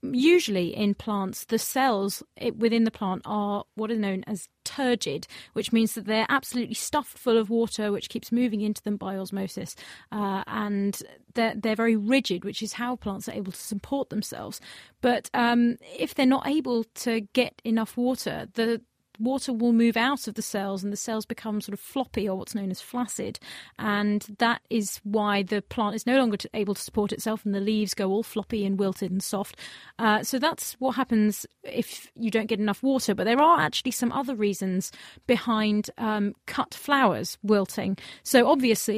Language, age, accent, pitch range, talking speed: English, 30-49, British, 205-245 Hz, 190 wpm